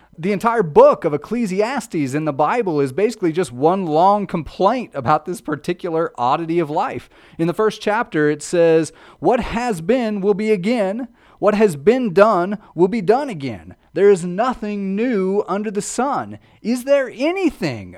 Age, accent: 30-49, American